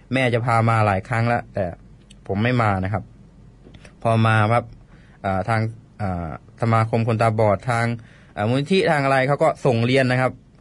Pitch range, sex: 110-135 Hz, male